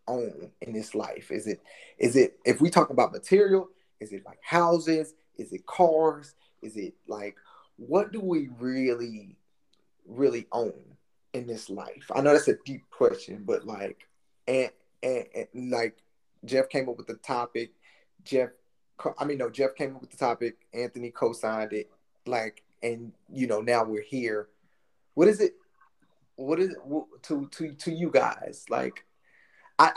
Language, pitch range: English, 120-165 Hz